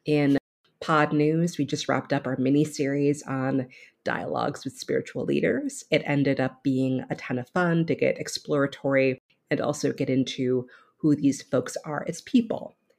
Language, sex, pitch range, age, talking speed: English, female, 135-175 Hz, 30-49, 165 wpm